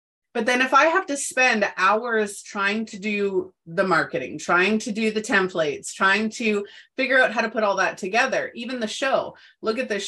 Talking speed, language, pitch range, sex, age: 200 wpm, English, 180-235 Hz, female, 30-49